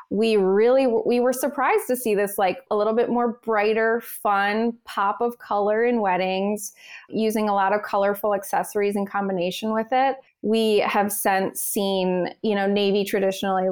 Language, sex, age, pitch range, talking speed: English, female, 20-39, 185-220 Hz, 165 wpm